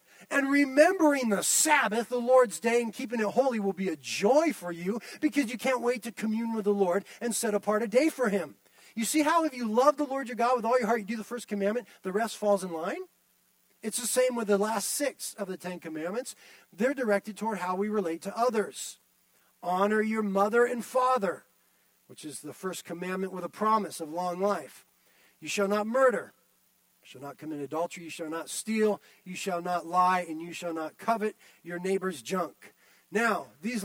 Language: English